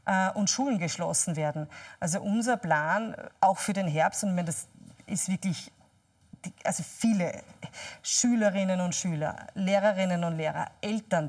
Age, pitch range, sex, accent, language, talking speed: 30-49, 175-205 Hz, female, German, German, 135 wpm